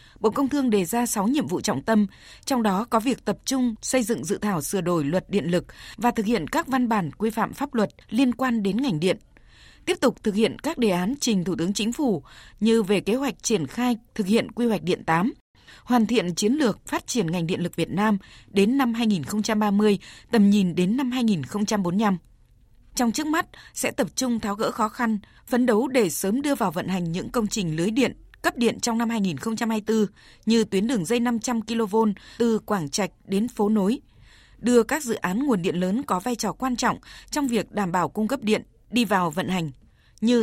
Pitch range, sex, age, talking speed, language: 195-240 Hz, female, 20-39, 220 wpm, Vietnamese